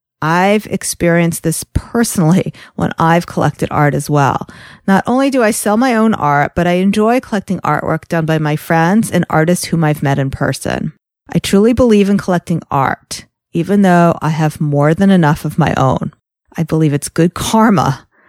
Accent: American